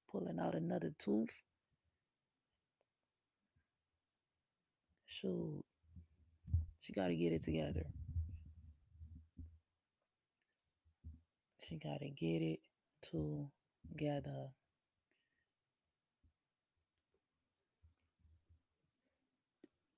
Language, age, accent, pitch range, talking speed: English, 30-49, American, 80-130 Hz, 40 wpm